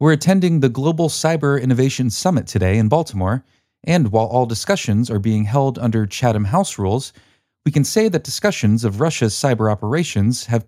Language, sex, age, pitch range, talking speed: English, male, 30-49, 105-145 Hz, 175 wpm